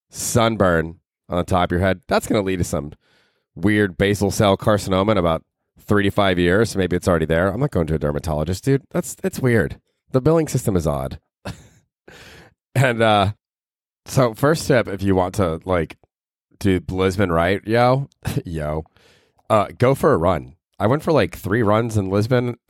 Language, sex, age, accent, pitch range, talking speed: English, male, 30-49, American, 90-115 Hz, 180 wpm